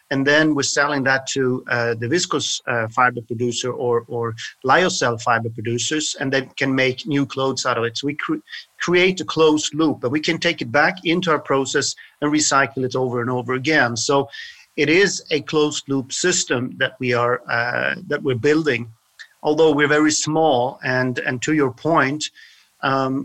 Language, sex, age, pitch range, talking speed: English, male, 40-59, 130-155 Hz, 190 wpm